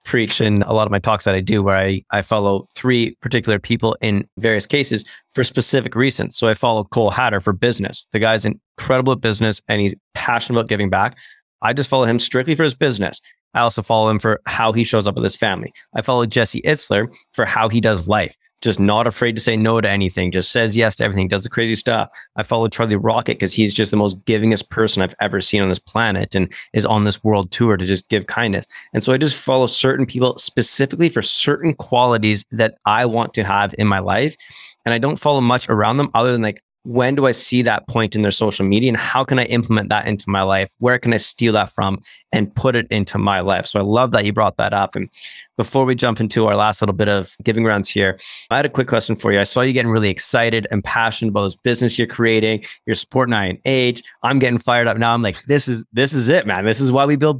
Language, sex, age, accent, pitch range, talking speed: English, male, 20-39, American, 105-125 Hz, 250 wpm